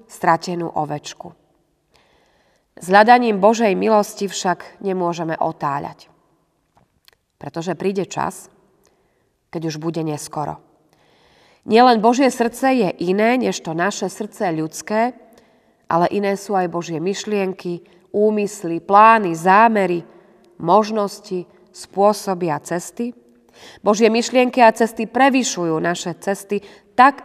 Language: Slovak